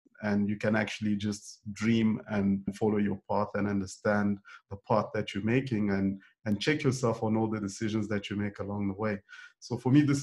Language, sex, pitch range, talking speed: English, male, 105-120 Hz, 205 wpm